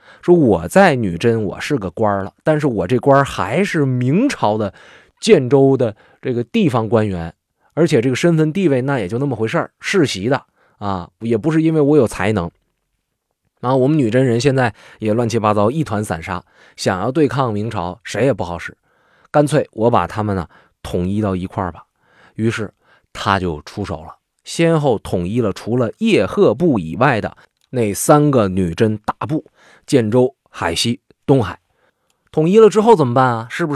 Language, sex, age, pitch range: Chinese, male, 20-39, 100-145 Hz